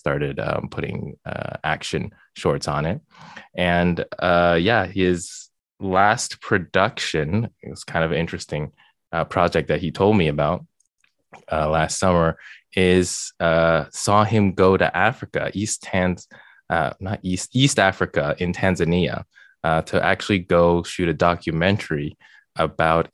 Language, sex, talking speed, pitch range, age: English, male, 135 wpm, 80-95 Hz, 20-39